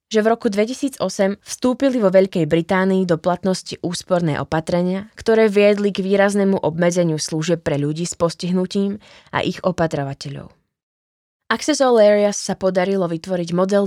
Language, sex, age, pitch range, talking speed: Slovak, female, 20-39, 165-205 Hz, 135 wpm